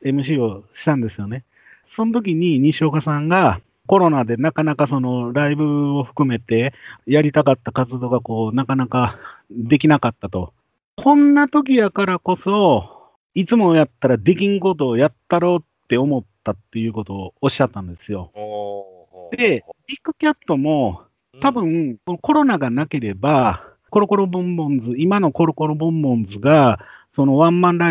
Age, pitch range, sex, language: 40-59, 115-165 Hz, male, Japanese